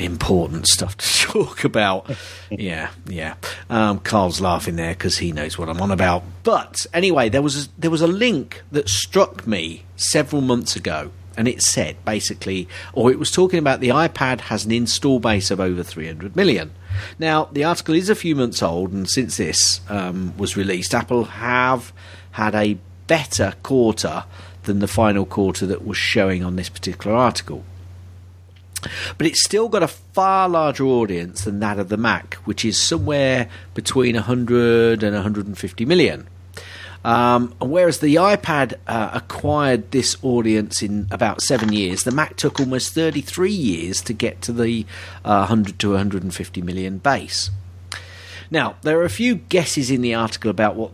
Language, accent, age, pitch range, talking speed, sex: English, British, 40-59, 90-125 Hz, 165 wpm, male